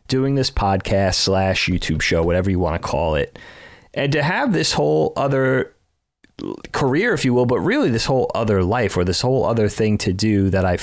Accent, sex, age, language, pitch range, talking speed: American, male, 30-49, English, 95-115 Hz, 205 wpm